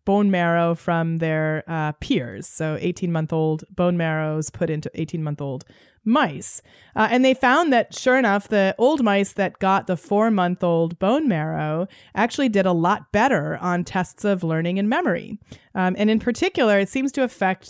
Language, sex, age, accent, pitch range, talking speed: English, female, 30-49, American, 170-215 Hz, 165 wpm